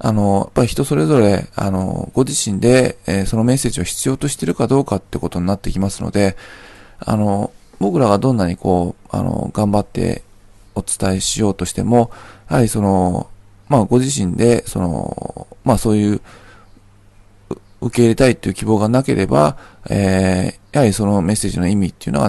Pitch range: 100-125 Hz